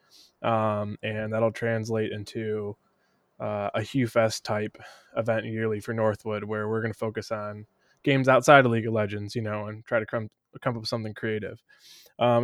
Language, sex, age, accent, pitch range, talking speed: English, male, 20-39, American, 110-125 Hz, 185 wpm